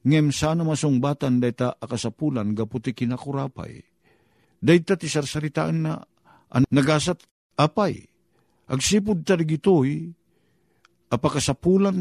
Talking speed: 100 wpm